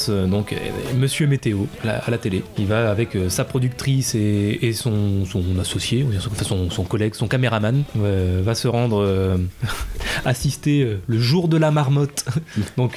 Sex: male